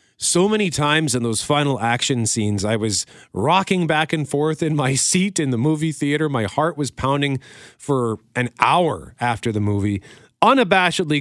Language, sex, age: English, male, 40-59